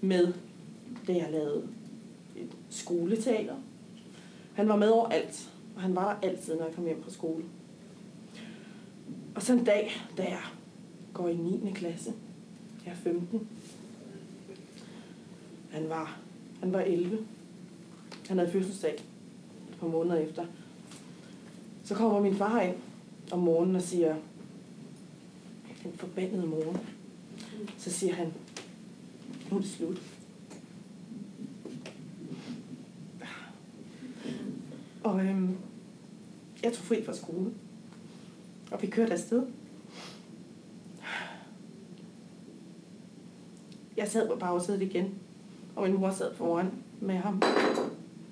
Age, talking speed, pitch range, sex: 30-49, 110 wpm, 185-215 Hz, female